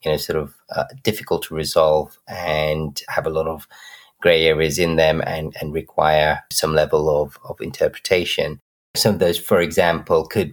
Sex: male